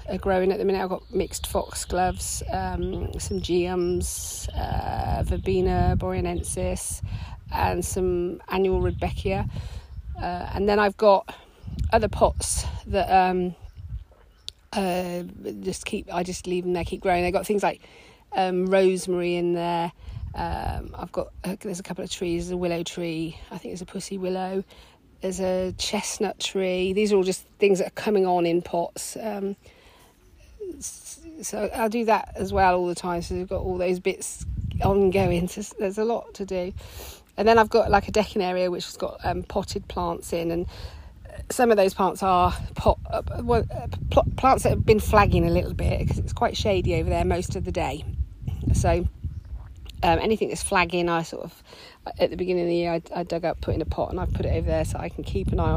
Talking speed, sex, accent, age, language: 195 wpm, female, British, 40-59, English